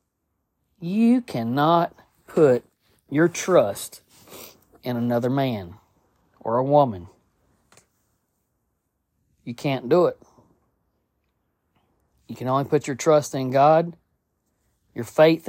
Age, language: 40-59, English